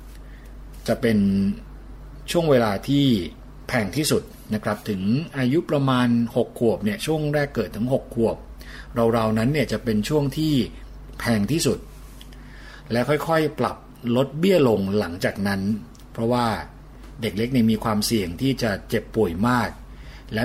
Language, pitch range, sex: Thai, 105-130 Hz, male